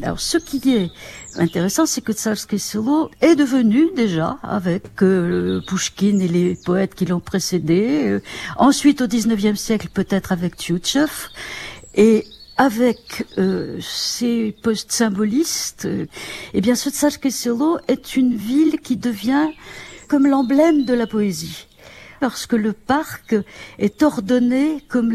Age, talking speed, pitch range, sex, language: 60-79, 135 wpm, 195-275 Hz, female, French